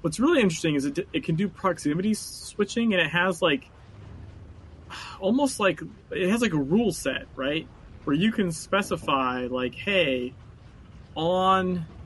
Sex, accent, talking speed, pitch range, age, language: male, American, 150 wpm, 120-165 Hz, 30-49, English